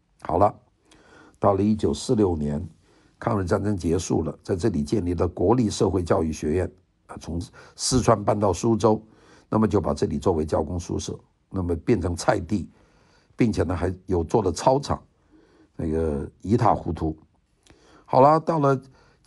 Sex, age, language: male, 50-69, Chinese